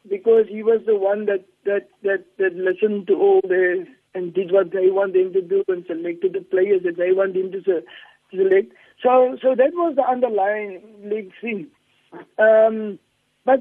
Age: 60-79